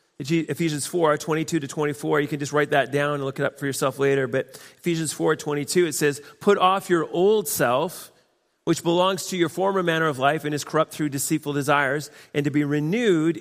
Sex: male